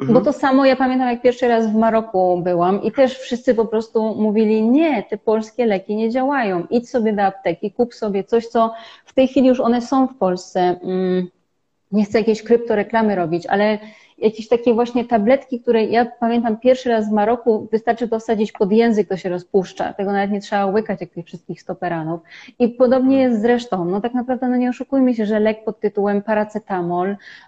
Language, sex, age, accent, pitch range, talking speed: Polish, female, 30-49, native, 195-235 Hz, 190 wpm